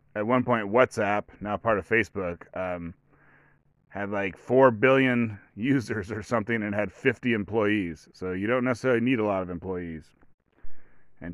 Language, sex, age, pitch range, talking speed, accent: English, male, 30-49, 100-125 Hz, 160 wpm, American